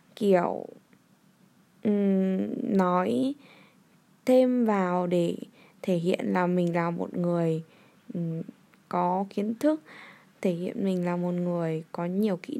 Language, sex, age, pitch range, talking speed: Vietnamese, female, 10-29, 180-230 Hz, 115 wpm